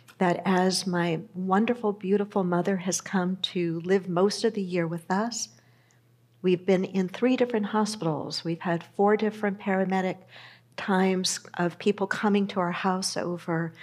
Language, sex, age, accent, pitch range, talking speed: English, female, 60-79, American, 185-235 Hz, 150 wpm